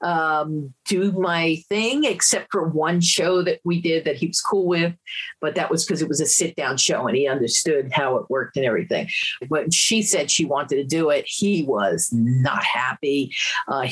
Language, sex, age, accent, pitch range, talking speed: English, female, 50-69, American, 160-205 Hz, 205 wpm